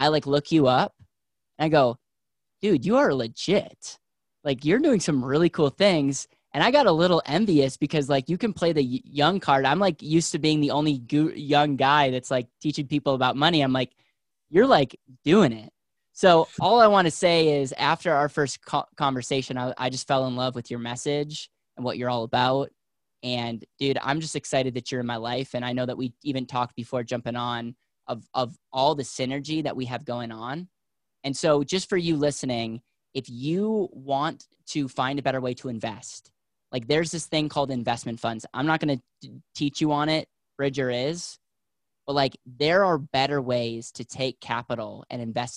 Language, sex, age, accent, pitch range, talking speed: English, male, 10-29, American, 125-150 Hz, 200 wpm